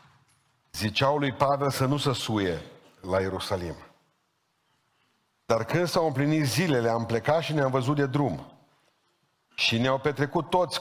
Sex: male